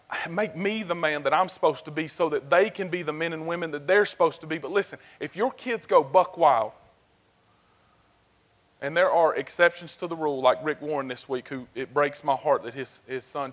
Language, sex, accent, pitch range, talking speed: English, male, American, 135-155 Hz, 230 wpm